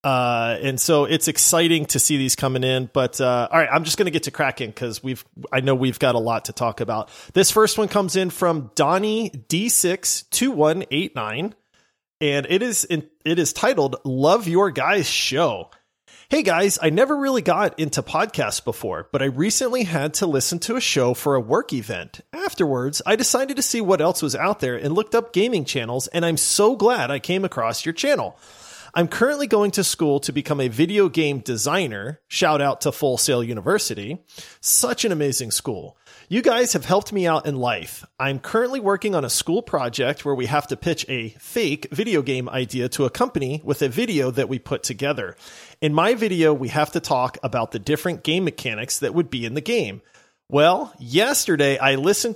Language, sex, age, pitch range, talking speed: English, male, 30-49, 130-190 Hz, 200 wpm